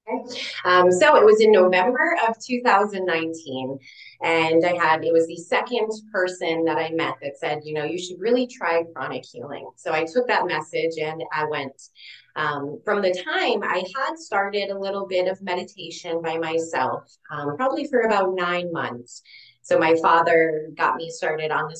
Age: 20-39